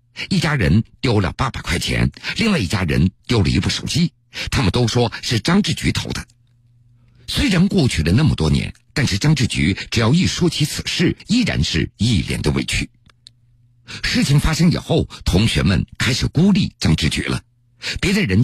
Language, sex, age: Chinese, male, 50-69